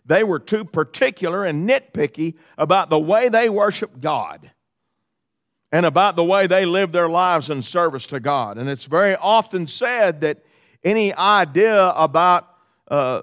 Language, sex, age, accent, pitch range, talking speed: English, male, 50-69, American, 160-215 Hz, 155 wpm